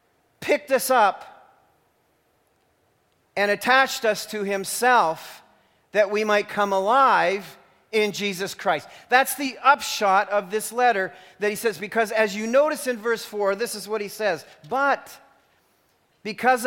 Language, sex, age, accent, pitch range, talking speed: English, male, 40-59, American, 185-235 Hz, 140 wpm